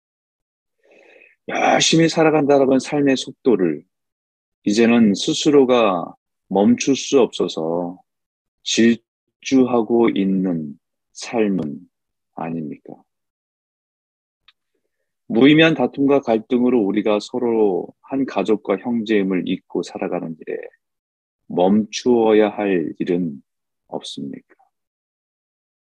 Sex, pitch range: male, 85-125 Hz